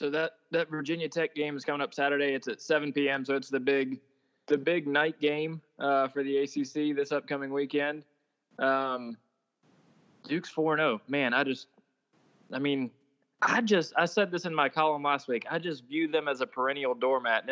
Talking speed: 200 wpm